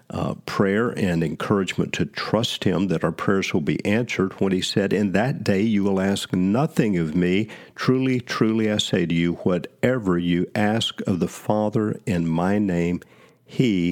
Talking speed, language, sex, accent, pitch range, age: 175 wpm, English, male, American, 95-125 Hz, 50-69